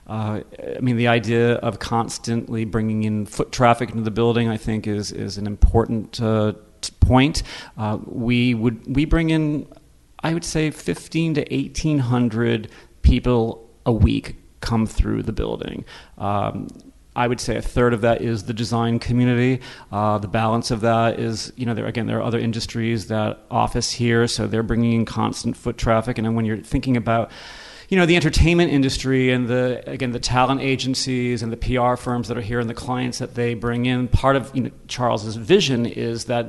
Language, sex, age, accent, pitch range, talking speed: English, male, 40-59, American, 115-125 Hz, 190 wpm